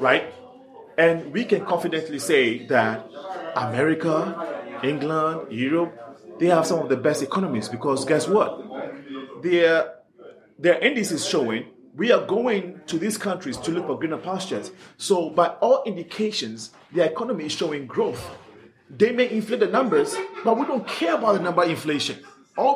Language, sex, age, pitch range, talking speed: Swahili, male, 30-49, 155-205 Hz, 155 wpm